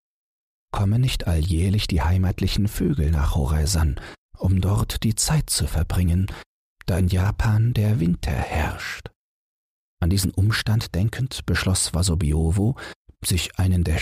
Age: 40-59